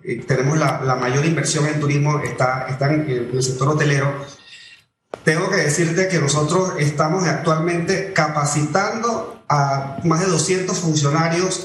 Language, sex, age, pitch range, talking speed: Spanish, male, 30-49, 145-175 Hz, 145 wpm